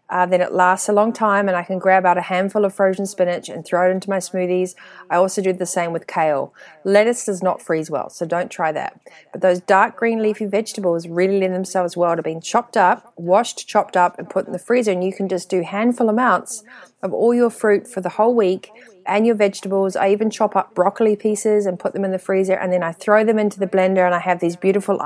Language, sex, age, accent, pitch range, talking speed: English, female, 30-49, Australian, 175-200 Hz, 250 wpm